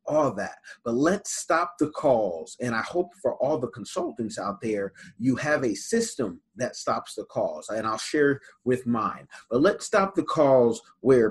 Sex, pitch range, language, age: male, 125-180 Hz, English, 30-49